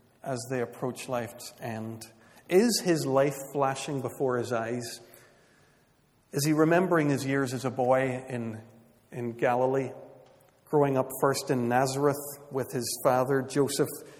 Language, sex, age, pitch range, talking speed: English, male, 50-69, 125-145 Hz, 135 wpm